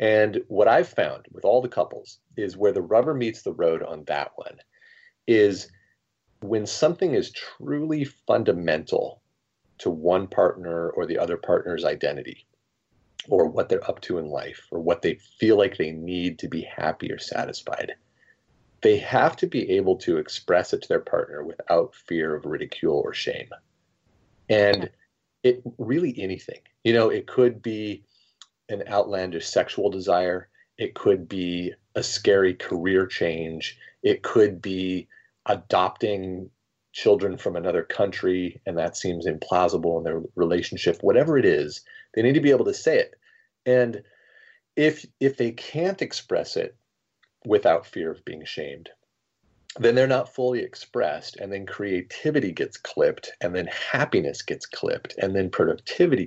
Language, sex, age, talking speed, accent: English, male, 30-49, 155 wpm, American